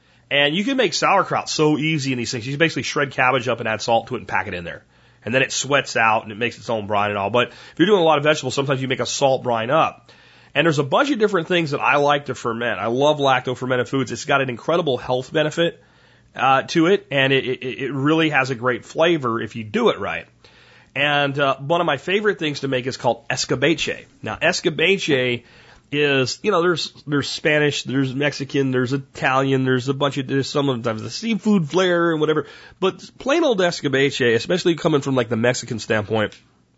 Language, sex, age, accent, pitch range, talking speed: English, male, 30-49, American, 120-145 Hz, 230 wpm